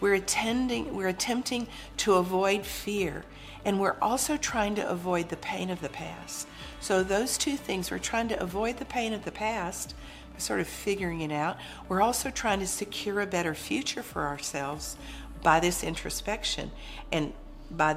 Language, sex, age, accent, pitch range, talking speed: English, female, 50-69, American, 160-215 Hz, 170 wpm